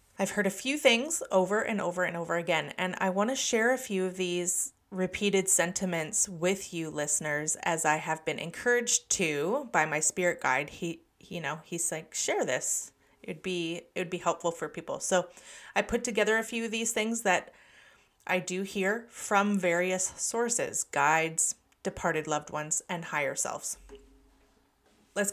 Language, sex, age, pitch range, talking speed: English, female, 30-49, 170-205 Hz, 175 wpm